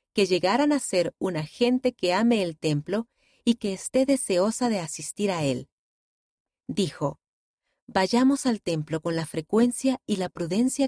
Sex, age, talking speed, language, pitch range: female, 30-49, 155 wpm, Spanish, 170-240 Hz